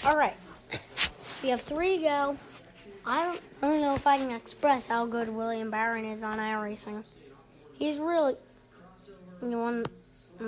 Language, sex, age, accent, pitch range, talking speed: English, female, 20-39, American, 220-310 Hz, 150 wpm